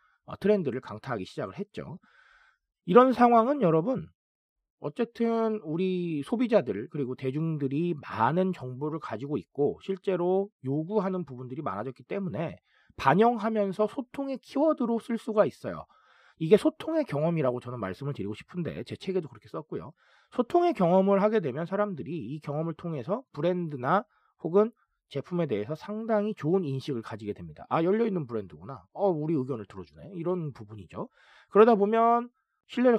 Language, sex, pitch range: Korean, male, 145-220 Hz